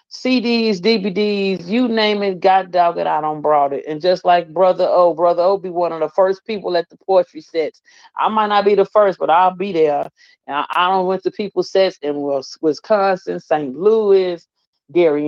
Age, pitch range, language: 40-59, 155-200 Hz, English